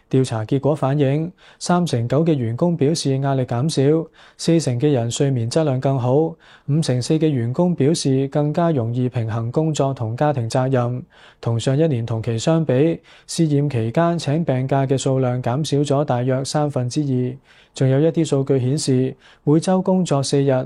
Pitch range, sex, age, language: 130-155 Hz, male, 20-39, Chinese